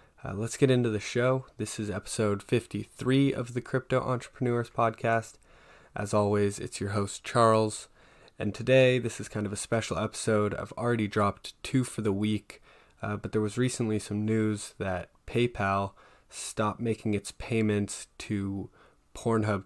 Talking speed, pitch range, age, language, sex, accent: 160 wpm, 100-115 Hz, 20-39, English, male, American